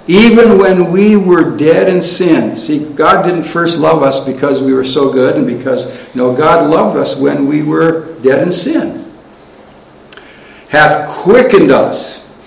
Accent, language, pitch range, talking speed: American, English, 150-215 Hz, 160 wpm